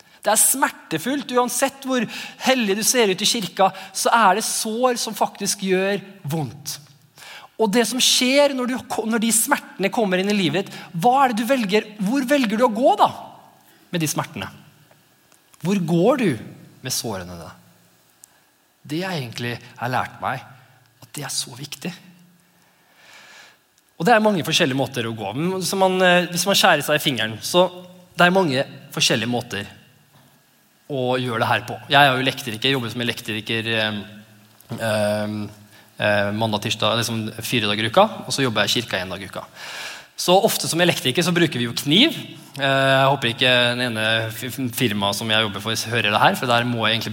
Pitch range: 120-195 Hz